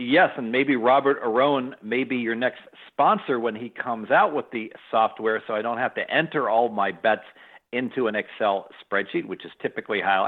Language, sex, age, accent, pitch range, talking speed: English, male, 50-69, American, 100-125 Hz, 200 wpm